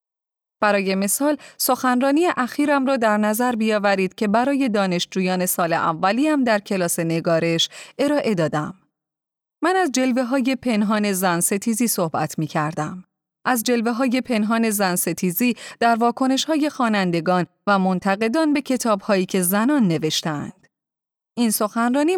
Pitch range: 185-255 Hz